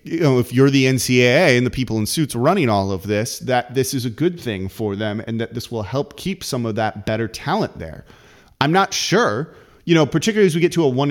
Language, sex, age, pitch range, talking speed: English, male, 30-49, 115-140 Hz, 255 wpm